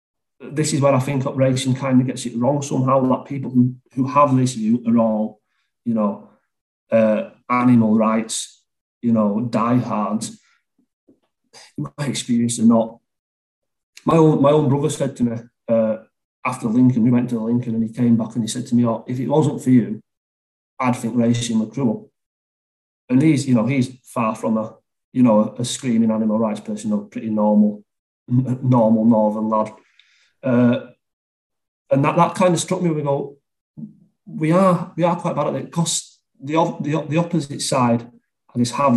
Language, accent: English, British